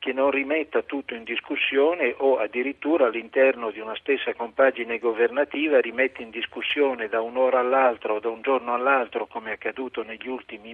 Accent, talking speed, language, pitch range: native, 170 wpm, Italian, 115-140 Hz